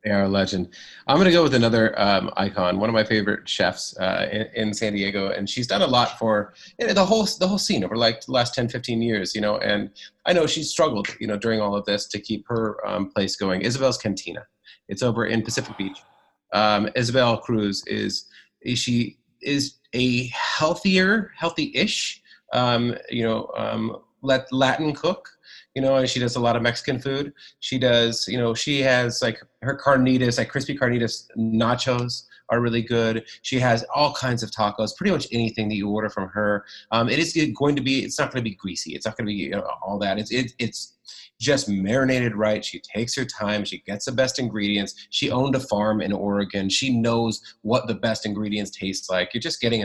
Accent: American